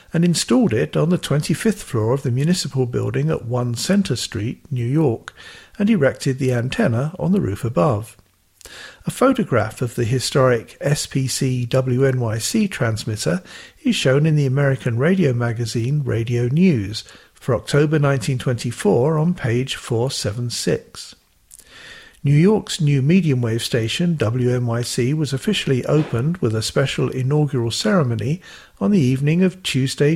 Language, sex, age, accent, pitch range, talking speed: English, male, 50-69, British, 120-155 Hz, 135 wpm